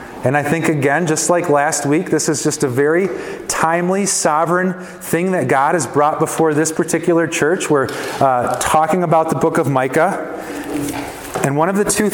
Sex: male